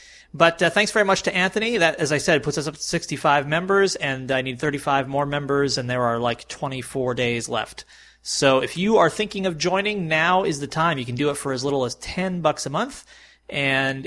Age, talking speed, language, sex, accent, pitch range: 30-49, 230 wpm, English, male, American, 120-160 Hz